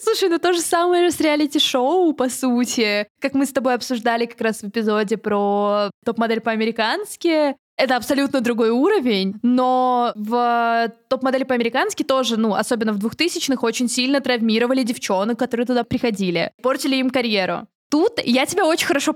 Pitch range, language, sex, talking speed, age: 230-295 Hz, Russian, female, 155 wpm, 20-39